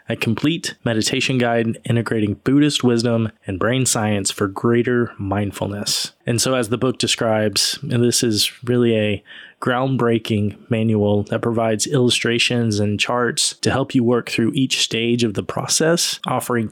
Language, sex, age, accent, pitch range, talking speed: English, male, 20-39, American, 110-130 Hz, 150 wpm